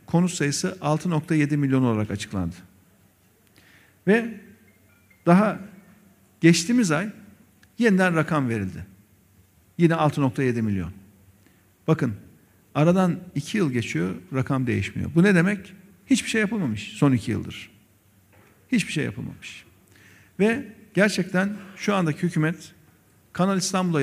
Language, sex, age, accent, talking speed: Turkish, male, 50-69, native, 105 wpm